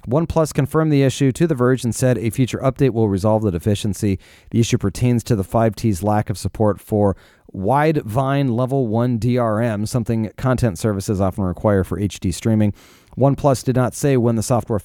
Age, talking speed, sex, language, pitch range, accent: 30-49, 180 wpm, male, English, 110-135 Hz, American